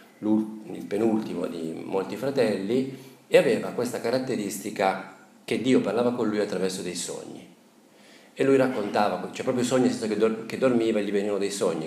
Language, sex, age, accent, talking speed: Italian, male, 40-59, native, 145 wpm